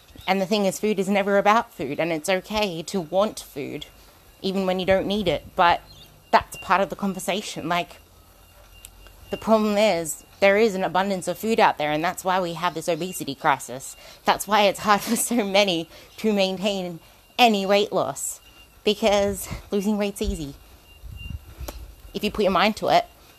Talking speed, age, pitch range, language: 180 wpm, 30-49, 175-215 Hz, English